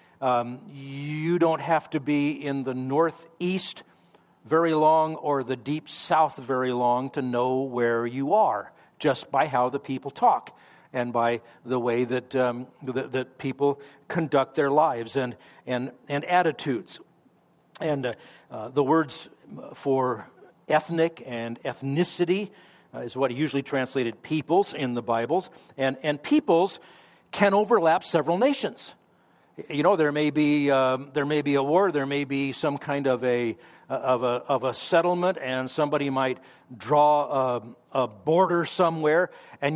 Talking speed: 150 wpm